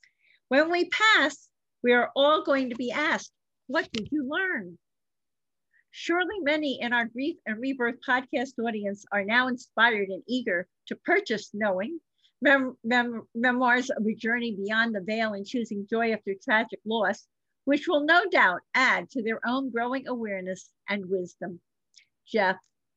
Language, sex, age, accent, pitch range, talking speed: English, female, 50-69, American, 210-275 Hz, 150 wpm